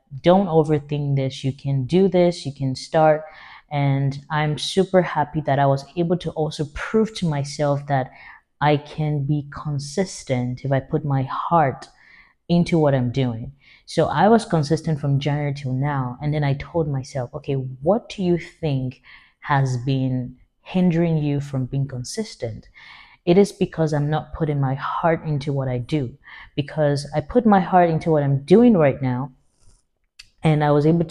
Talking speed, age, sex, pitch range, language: 170 wpm, 20-39, female, 140-180 Hz, English